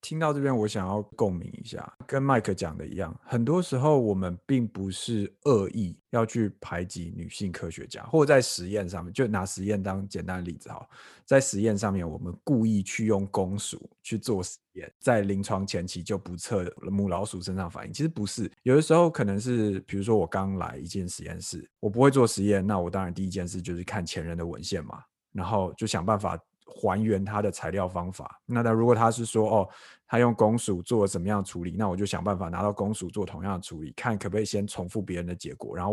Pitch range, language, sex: 95-115 Hz, Chinese, male